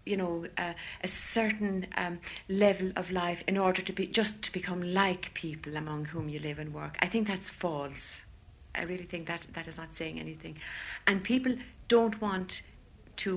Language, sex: English, female